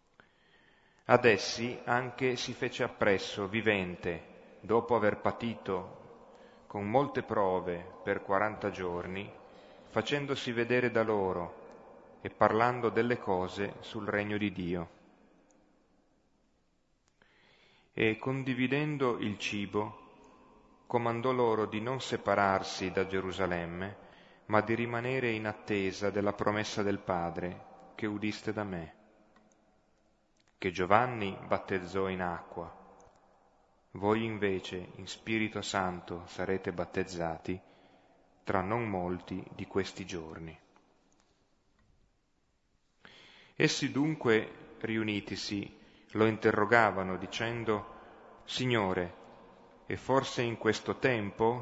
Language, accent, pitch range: Italian, native, 95-115 Hz